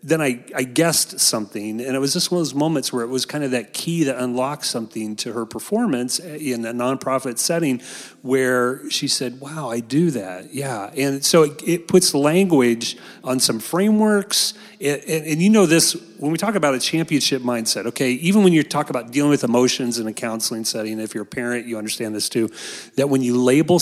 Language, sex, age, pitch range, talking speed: English, male, 30-49, 125-165 Hz, 210 wpm